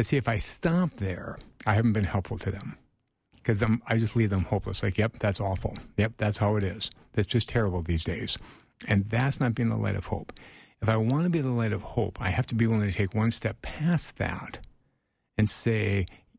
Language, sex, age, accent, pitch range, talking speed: English, male, 50-69, American, 105-125 Hz, 225 wpm